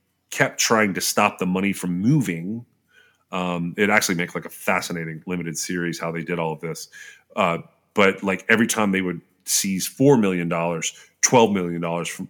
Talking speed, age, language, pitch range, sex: 175 wpm, 30-49, English, 85-100 Hz, male